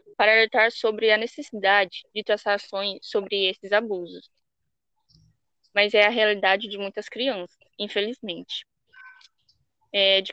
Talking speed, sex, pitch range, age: 120 wpm, female, 195-240 Hz, 10-29